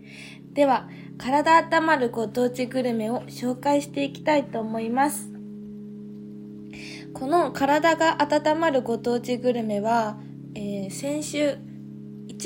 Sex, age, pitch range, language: female, 20-39, 195-260 Hz, Japanese